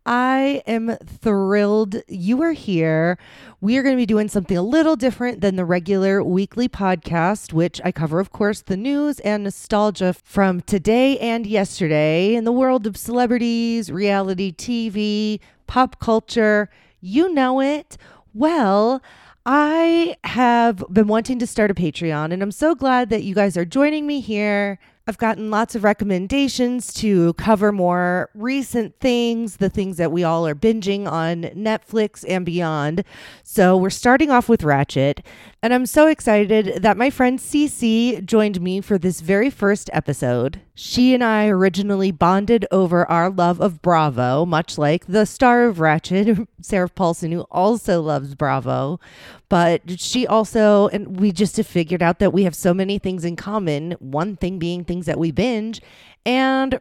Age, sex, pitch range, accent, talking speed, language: 30-49, female, 175-235 Hz, American, 165 wpm, English